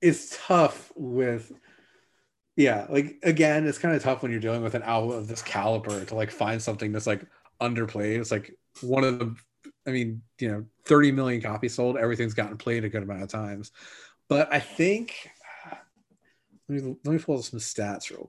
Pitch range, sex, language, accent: 110-140 Hz, male, English, American